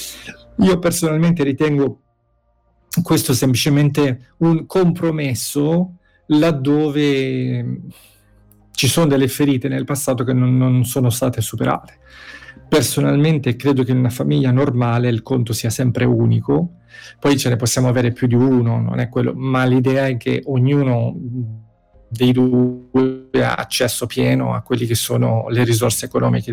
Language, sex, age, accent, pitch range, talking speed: Italian, male, 40-59, native, 120-135 Hz, 125 wpm